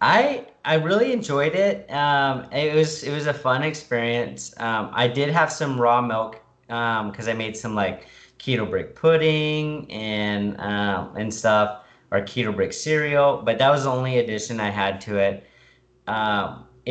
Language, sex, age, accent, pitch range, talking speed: English, male, 30-49, American, 100-130 Hz, 170 wpm